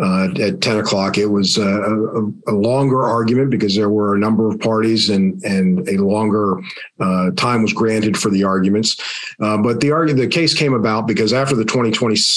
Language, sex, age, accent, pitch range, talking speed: English, male, 40-59, American, 105-120 Hz, 200 wpm